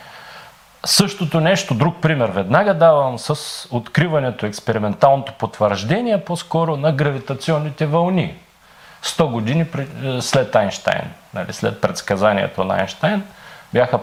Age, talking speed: 40-59, 105 wpm